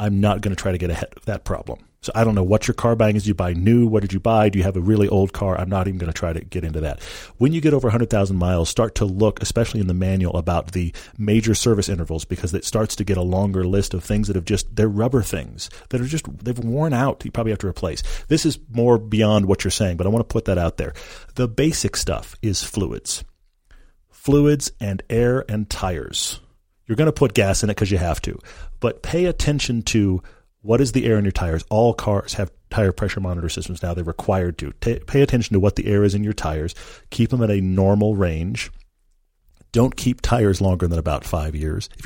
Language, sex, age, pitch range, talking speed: English, male, 40-59, 90-115 Hz, 250 wpm